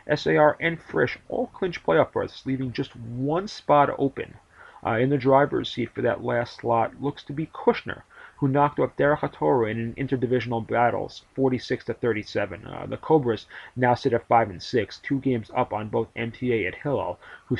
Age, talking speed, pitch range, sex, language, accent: 30-49, 170 wpm, 110-140 Hz, male, English, American